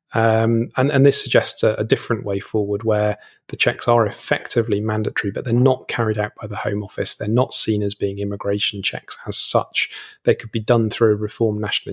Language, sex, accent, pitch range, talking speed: English, male, British, 110-125 Hz, 210 wpm